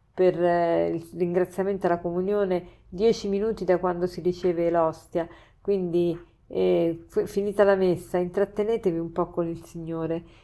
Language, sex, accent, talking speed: Italian, female, native, 140 wpm